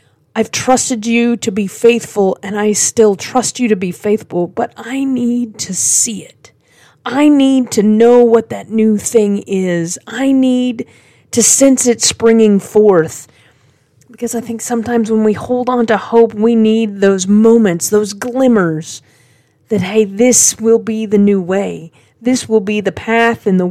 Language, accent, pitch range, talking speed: English, American, 185-235 Hz, 170 wpm